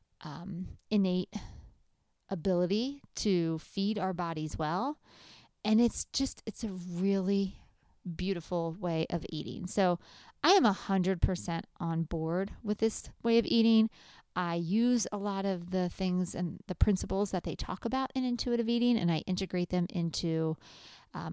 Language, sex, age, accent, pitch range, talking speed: English, female, 40-59, American, 180-225 Hz, 150 wpm